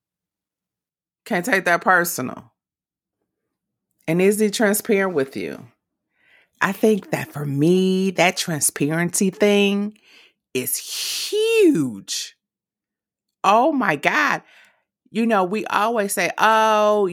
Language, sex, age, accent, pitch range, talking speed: English, female, 30-49, American, 155-200 Hz, 100 wpm